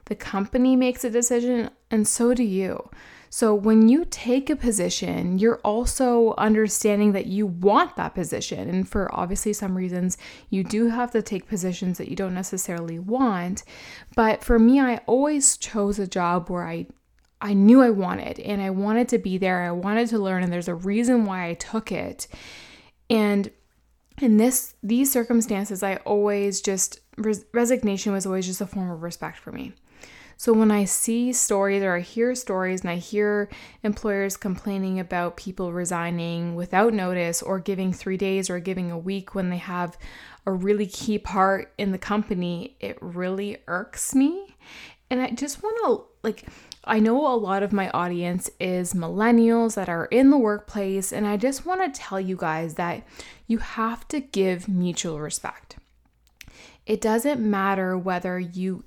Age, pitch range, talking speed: 20-39, 185-230 Hz, 175 wpm